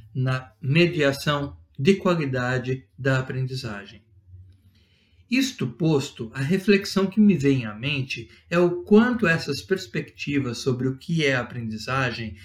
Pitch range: 120-160 Hz